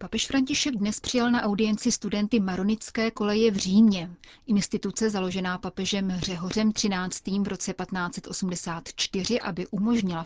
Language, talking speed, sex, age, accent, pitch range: Czech, 125 wpm, female, 30-49, native, 180-215 Hz